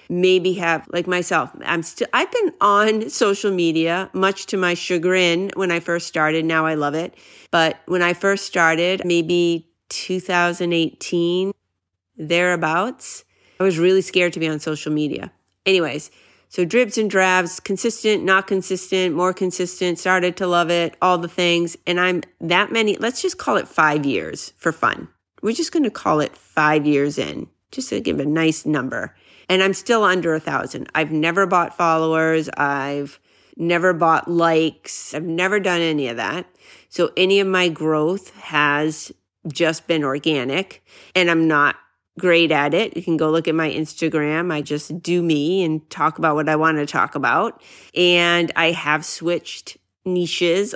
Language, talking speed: English, 170 wpm